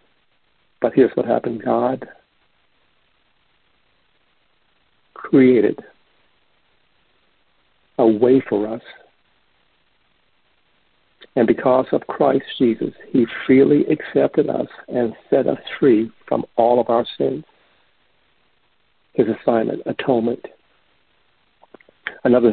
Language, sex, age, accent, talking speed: English, male, 60-79, American, 85 wpm